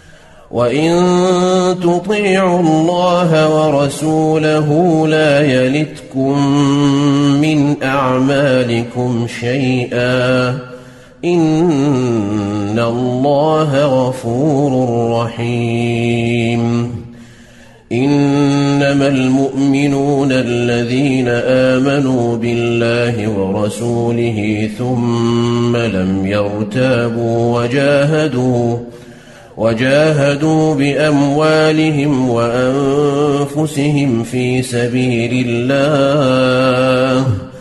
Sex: male